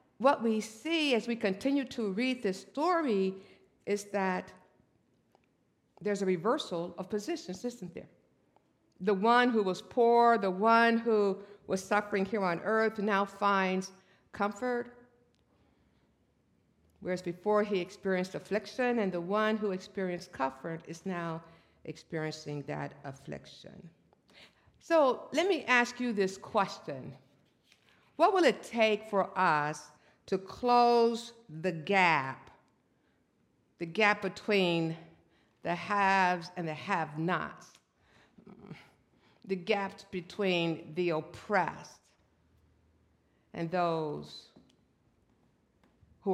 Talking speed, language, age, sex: 110 wpm, English, 60-79, female